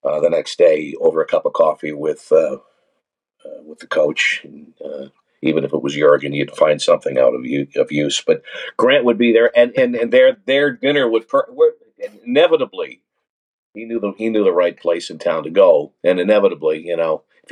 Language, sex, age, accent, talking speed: English, male, 50-69, American, 210 wpm